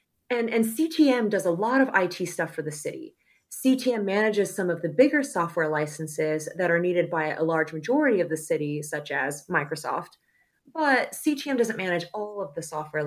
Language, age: English, 30-49